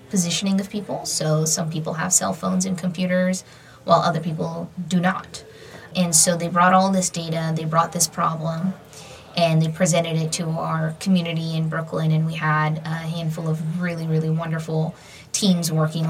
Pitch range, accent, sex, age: 160-175 Hz, American, female, 20-39